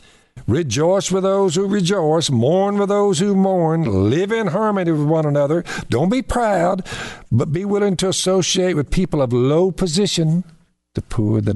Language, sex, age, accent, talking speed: English, male, 60-79, American, 165 wpm